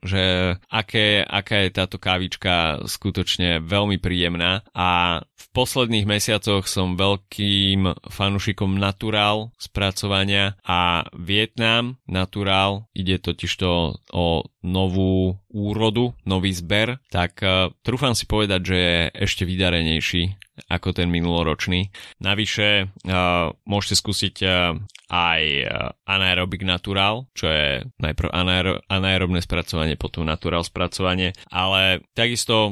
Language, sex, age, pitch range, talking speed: Slovak, male, 20-39, 85-105 Hz, 105 wpm